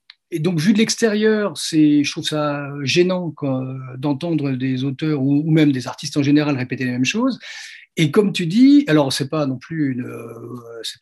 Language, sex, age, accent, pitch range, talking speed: French, male, 40-59, French, 145-190 Hz, 200 wpm